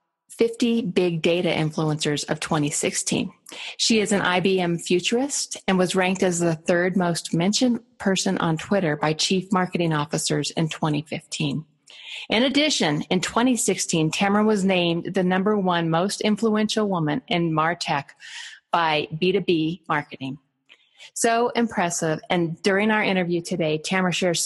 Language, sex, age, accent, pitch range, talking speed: English, female, 40-59, American, 165-210 Hz, 135 wpm